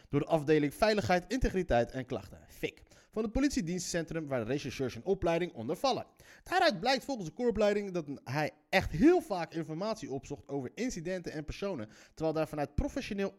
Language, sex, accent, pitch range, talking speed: Dutch, male, Dutch, 140-210 Hz, 165 wpm